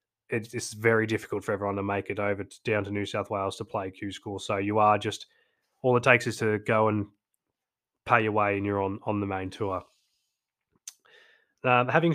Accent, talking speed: Australian, 200 wpm